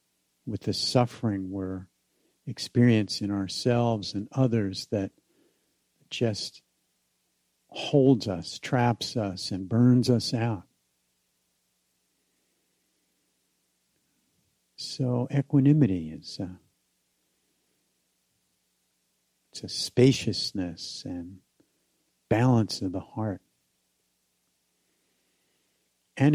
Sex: male